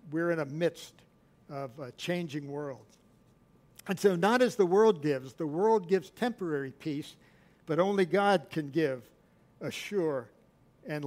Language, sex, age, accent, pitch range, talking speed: English, male, 60-79, American, 155-185 Hz, 150 wpm